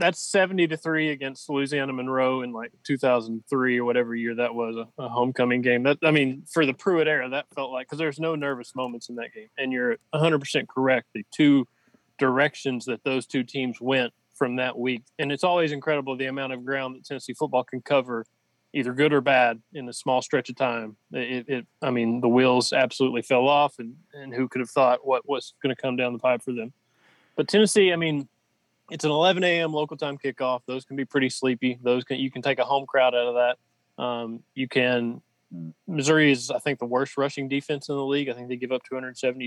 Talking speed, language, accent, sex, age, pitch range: 225 wpm, English, American, male, 20-39, 120-140 Hz